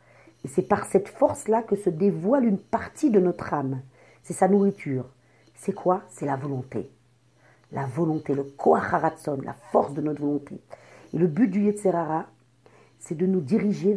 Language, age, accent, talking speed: French, 50-69, French, 170 wpm